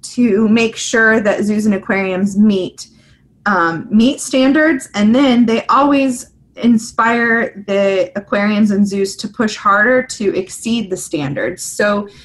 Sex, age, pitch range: female, 20-39, 190-230 Hz